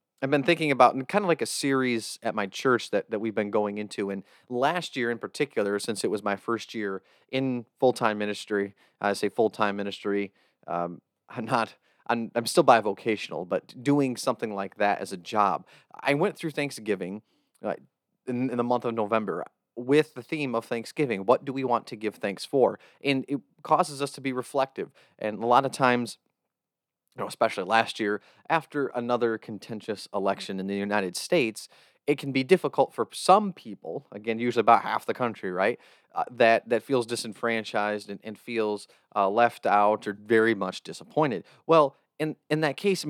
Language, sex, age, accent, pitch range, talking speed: English, male, 30-49, American, 105-135 Hz, 190 wpm